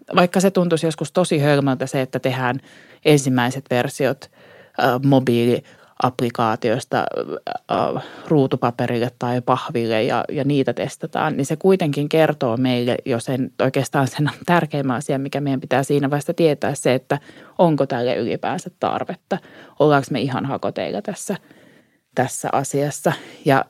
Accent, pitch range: native, 135-185 Hz